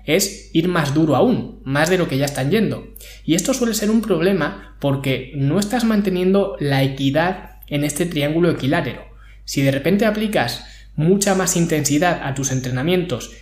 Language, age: Spanish, 20-39